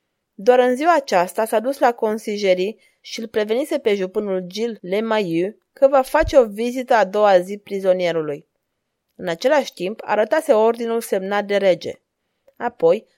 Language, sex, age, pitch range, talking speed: Romanian, female, 20-39, 200-265 Hz, 150 wpm